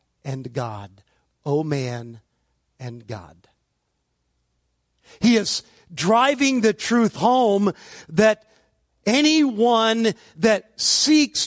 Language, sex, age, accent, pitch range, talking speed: English, male, 50-69, American, 155-230 Hz, 85 wpm